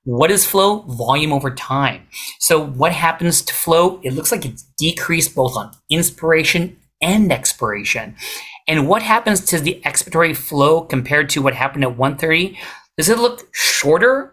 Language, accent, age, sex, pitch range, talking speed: English, American, 40-59, male, 135-185 Hz, 160 wpm